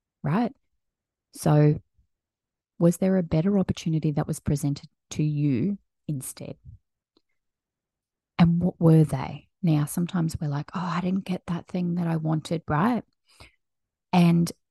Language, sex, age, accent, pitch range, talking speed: English, female, 30-49, Australian, 150-185 Hz, 130 wpm